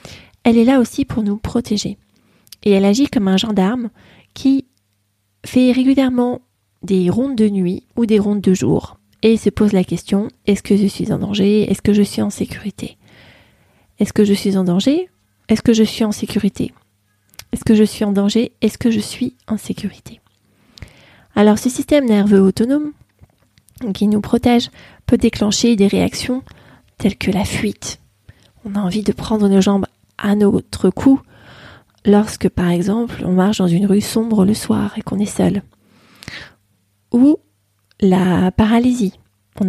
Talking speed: 170 wpm